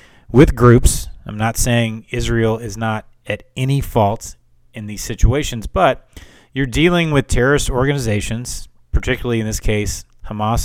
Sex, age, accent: male, 30-49, American